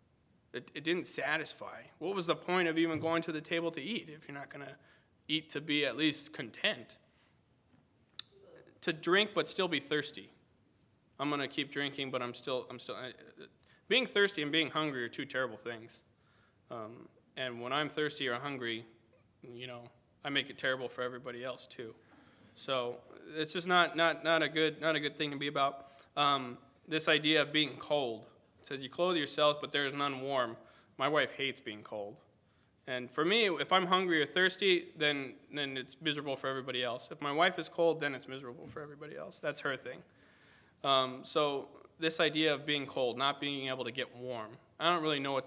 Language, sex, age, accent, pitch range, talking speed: English, male, 20-39, American, 125-155 Hz, 200 wpm